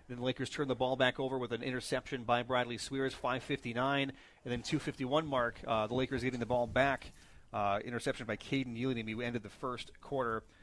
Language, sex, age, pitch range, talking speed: English, male, 40-59, 120-140 Hz, 205 wpm